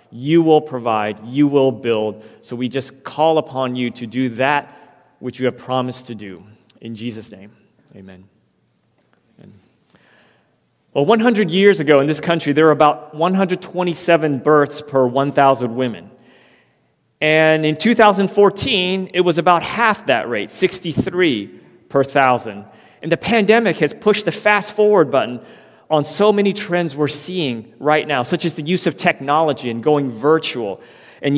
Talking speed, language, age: 150 wpm, English, 30-49